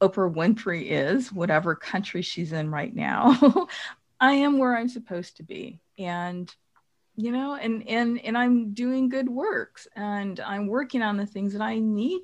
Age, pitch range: 50-69, 180-240 Hz